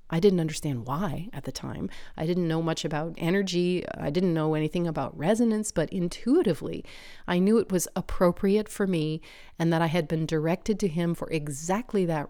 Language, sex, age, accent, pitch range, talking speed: English, female, 40-59, American, 155-180 Hz, 190 wpm